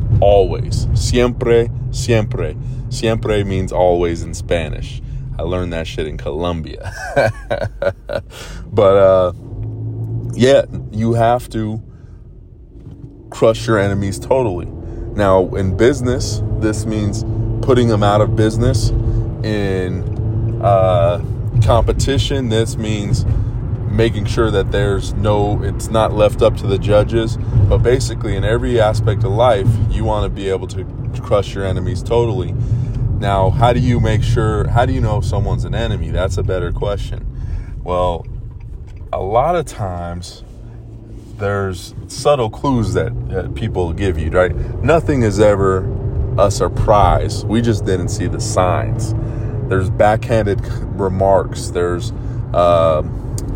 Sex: male